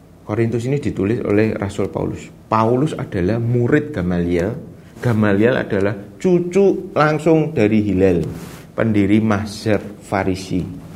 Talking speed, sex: 105 wpm, male